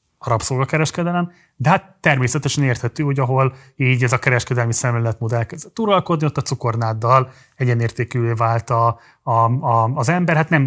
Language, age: Hungarian, 30-49